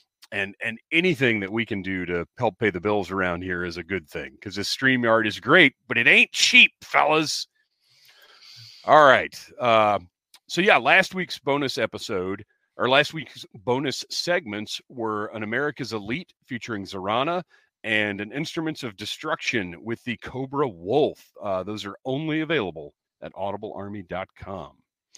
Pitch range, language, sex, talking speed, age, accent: 105-145 Hz, English, male, 155 wpm, 40-59, American